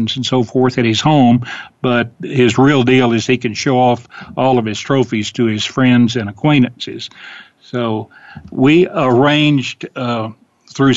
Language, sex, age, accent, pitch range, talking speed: English, male, 60-79, American, 115-130 Hz, 160 wpm